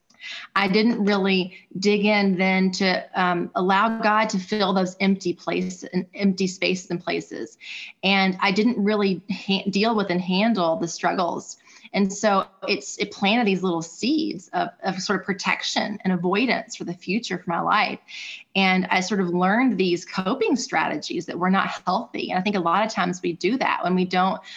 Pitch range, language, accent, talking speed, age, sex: 180-215 Hz, English, American, 190 wpm, 20-39, female